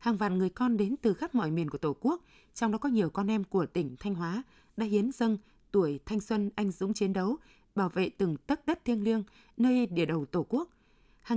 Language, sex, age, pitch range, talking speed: Vietnamese, female, 20-39, 175-225 Hz, 240 wpm